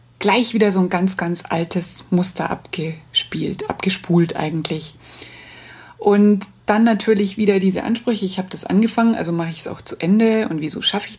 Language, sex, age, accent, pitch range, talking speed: German, female, 30-49, German, 175-210 Hz, 170 wpm